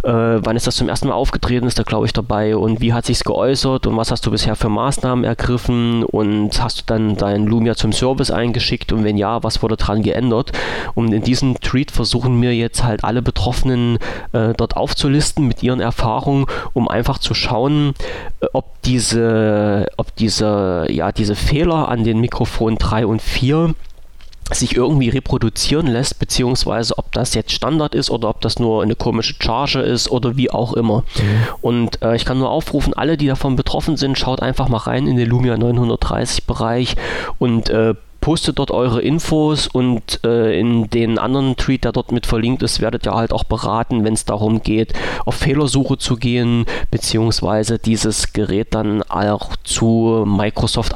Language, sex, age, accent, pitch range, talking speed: German, male, 30-49, German, 110-125 Hz, 180 wpm